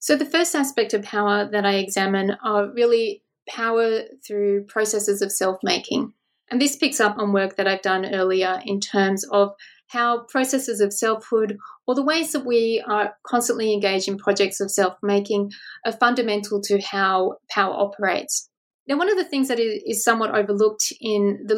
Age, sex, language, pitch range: 30-49, female, English, 205-255 Hz